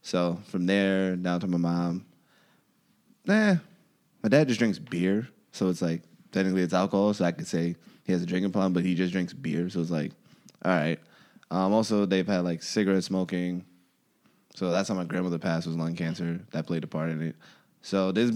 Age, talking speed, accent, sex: 20-39, 205 wpm, American, male